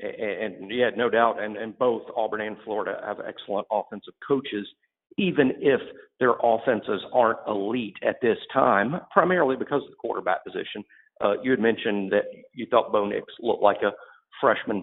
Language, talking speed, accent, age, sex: English, 175 wpm, American, 50-69, male